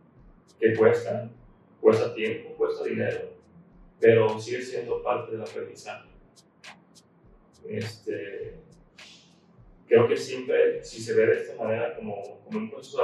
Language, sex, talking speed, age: Spanish, male, 125 wpm, 30-49